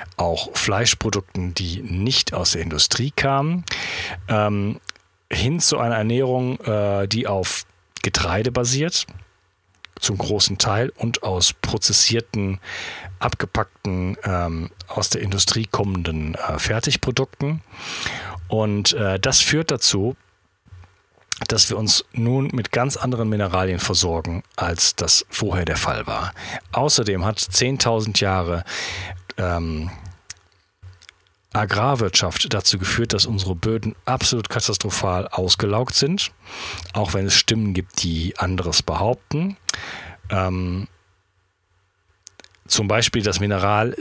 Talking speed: 110 wpm